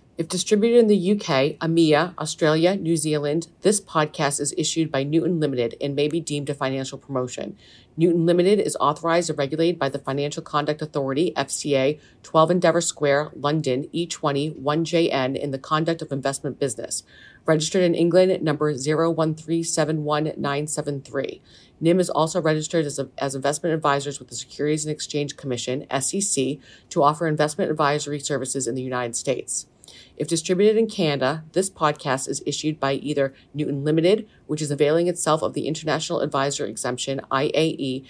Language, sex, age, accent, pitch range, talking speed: English, female, 40-59, American, 140-160 Hz, 155 wpm